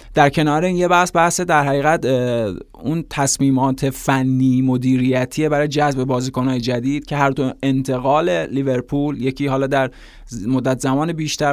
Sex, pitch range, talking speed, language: male, 130-150 Hz, 140 wpm, Persian